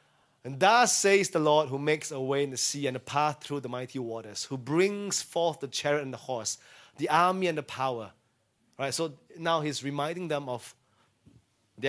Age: 20-39